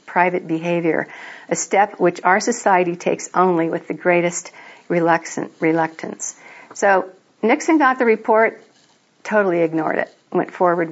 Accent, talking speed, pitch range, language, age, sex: American, 125 wpm, 165-200 Hz, English, 50-69, female